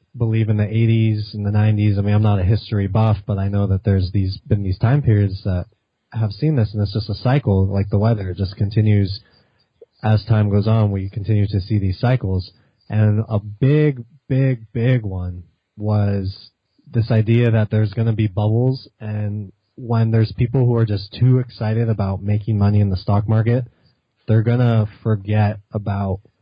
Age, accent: 20-39, American